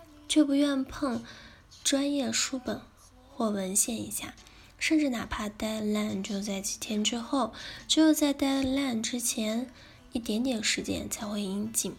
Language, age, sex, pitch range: Chinese, 10-29, female, 205-265 Hz